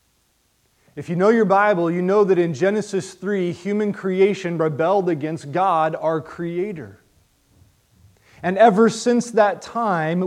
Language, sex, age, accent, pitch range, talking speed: English, male, 30-49, American, 155-195 Hz, 135 wpm